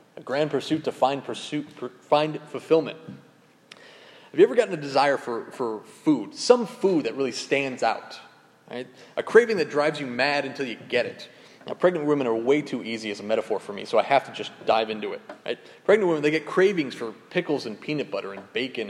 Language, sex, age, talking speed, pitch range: English, male, 30-49, 215 wpm, 120-180 Hz